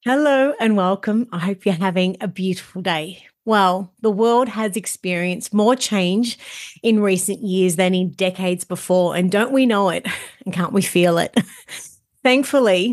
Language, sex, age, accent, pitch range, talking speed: English, female, 30-49, Australian, 185-230 Hz, 165 wpm